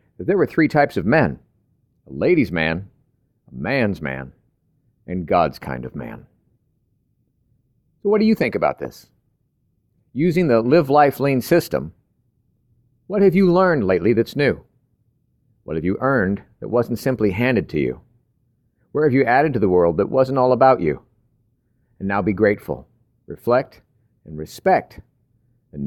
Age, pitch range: 50-69, 115-150 Hz